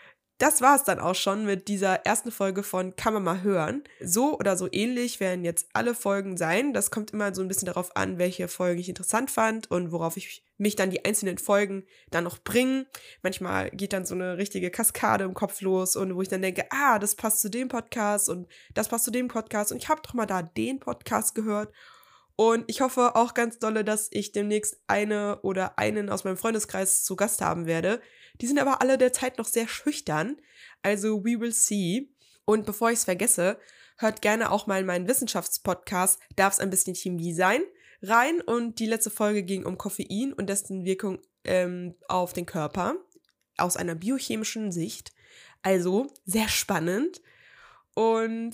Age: 20-39